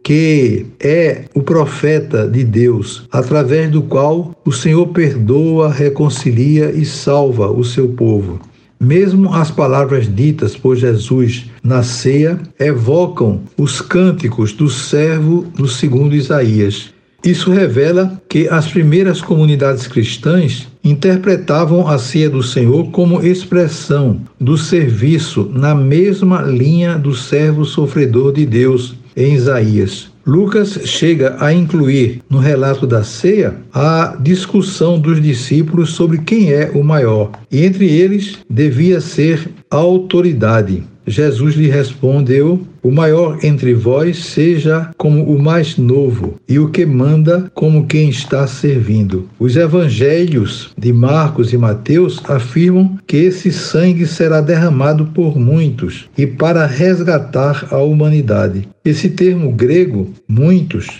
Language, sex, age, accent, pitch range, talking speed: Portuguese, male, 60-79, Brazilian, 130-170 Hz, 125 wpm